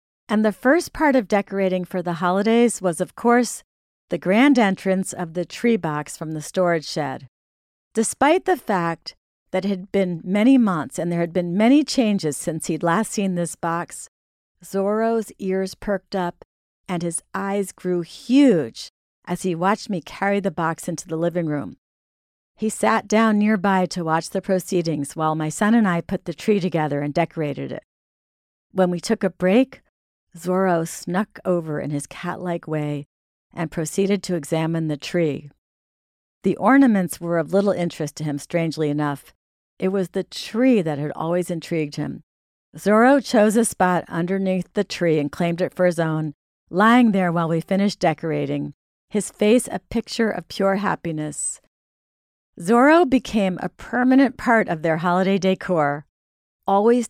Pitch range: 160-205 Hz